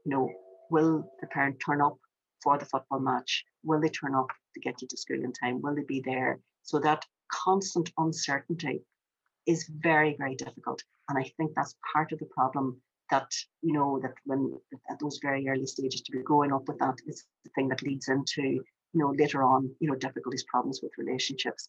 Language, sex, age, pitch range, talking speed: English, female, 50-69, 140-155 Hz, 200 wpm